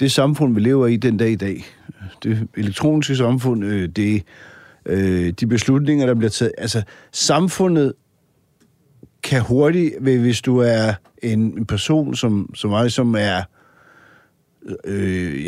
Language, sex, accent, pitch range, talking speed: Danish, male, native, 110-135 Hz, 140 wpm